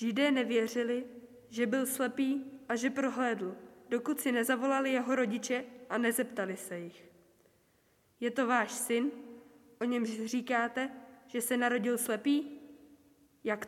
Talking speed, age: 125 wpm, 20-39